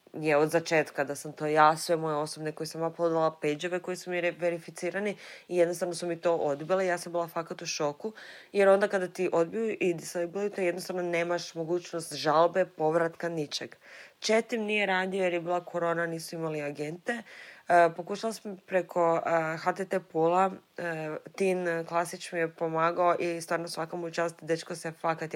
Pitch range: 160-185 Hz